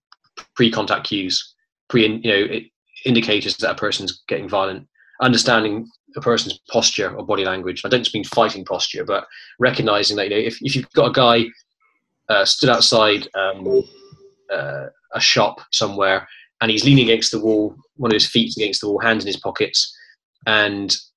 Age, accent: 20-39, British